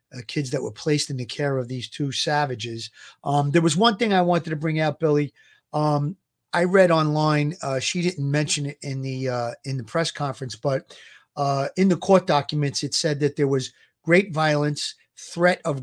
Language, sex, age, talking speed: English, male, 40-59, 200 wpm